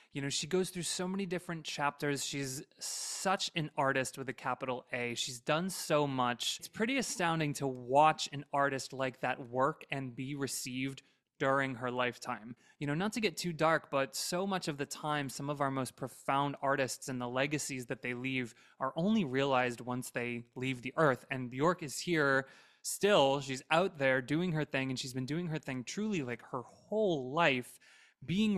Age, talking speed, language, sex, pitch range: 20-39, 195 wpm, English, male, 130-165 Hz